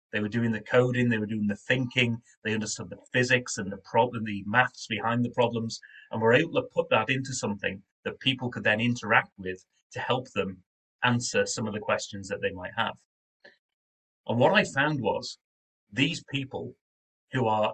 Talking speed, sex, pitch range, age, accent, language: 190 wpm, male, 100-125 Hz, 30-49, British, English